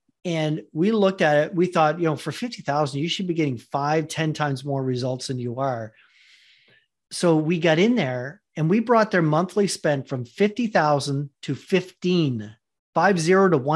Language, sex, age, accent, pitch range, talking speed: English, male, 40-59, American, 150-190 Hz, 180 wpm